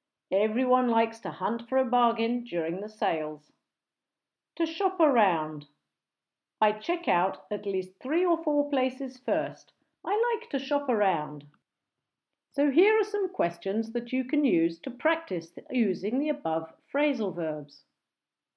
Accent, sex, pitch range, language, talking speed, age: British, female, 215-340 Hz, English, 140 wpm, 50-69